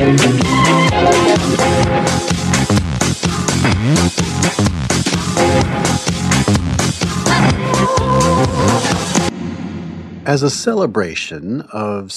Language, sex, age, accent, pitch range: English, male, 50-69, American, 90-120 Hz